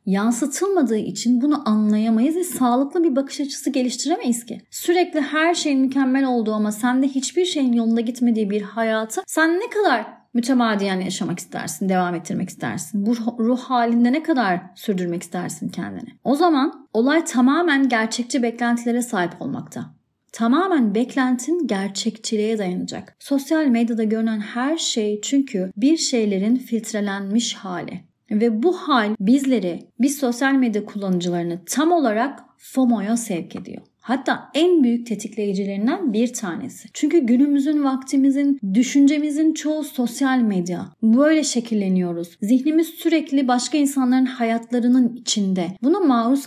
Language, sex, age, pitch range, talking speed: Turkish, female, 30-49, 220-280 Hz, 130 wpm